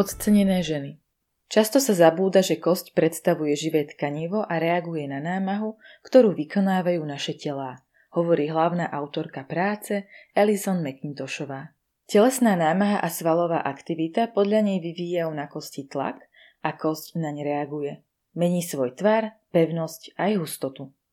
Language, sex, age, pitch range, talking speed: Slovak, female, 20-39, 150-200 Hz, 130 wpm